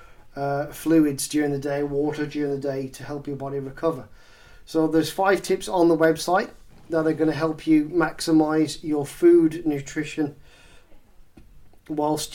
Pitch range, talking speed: 140-170 Hz, 155 wpm